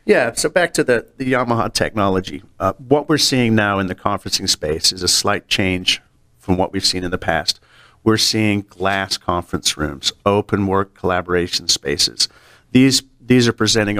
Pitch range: 100-130 Hz